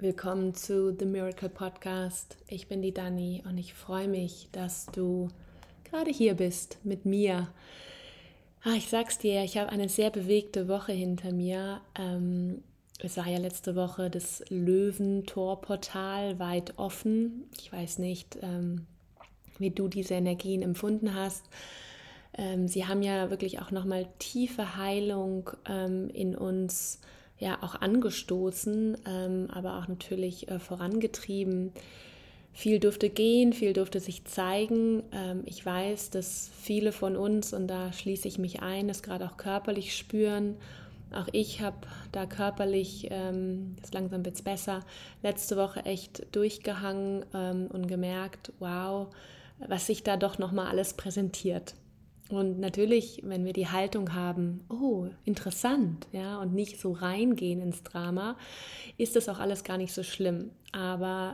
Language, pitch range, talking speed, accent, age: German, 185-205 Hz, 135 wpm, German, 20-39